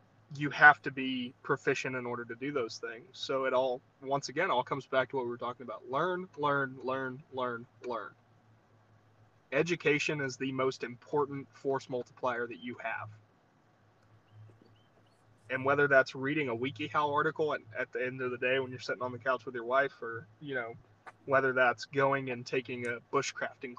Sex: male